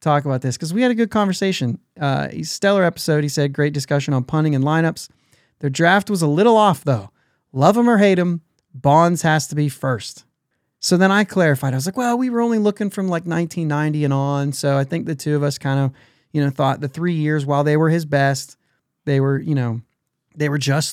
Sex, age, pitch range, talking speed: male, 30-49, 140-175 Hz, 235 wpm